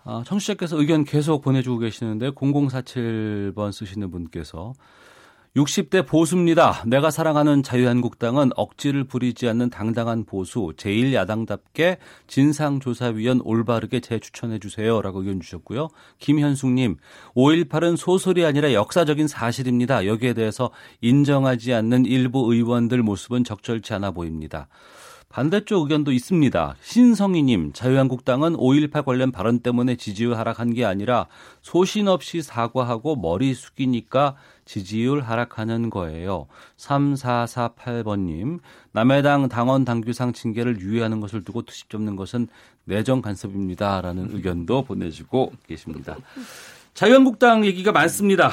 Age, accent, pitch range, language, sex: 40-59, native, 115-145 Hz, Korean, male